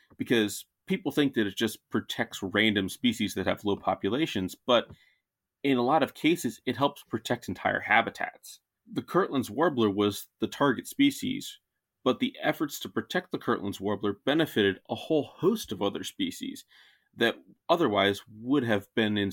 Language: English